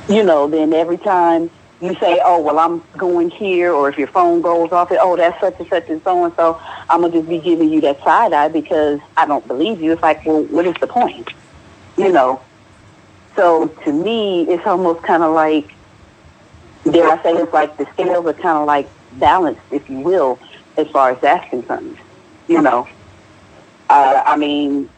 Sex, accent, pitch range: female, American, 150-190 Hz